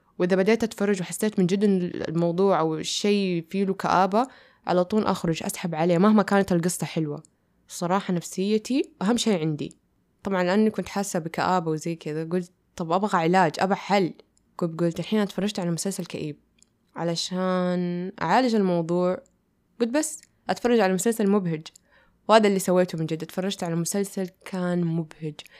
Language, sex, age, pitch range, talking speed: Arabic, female, 10-29, 175-205 Hz, 150 wpm